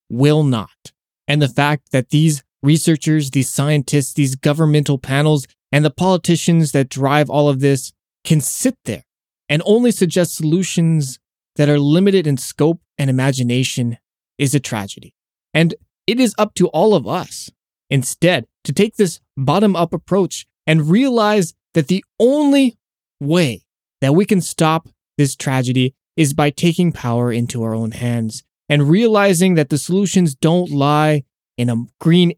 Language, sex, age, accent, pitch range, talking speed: English, male, 20-39, American, 140-180 Hz, 150 wpm